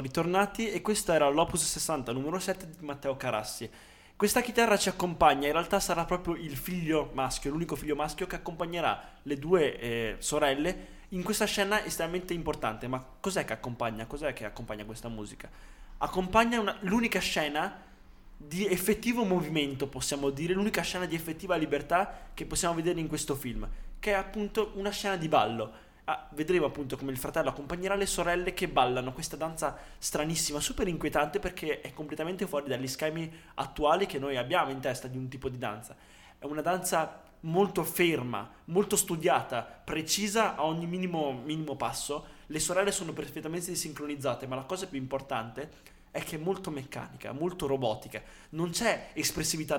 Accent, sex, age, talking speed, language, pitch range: native, male, 20-39, 165 wpm, Italian, 140-180 Hz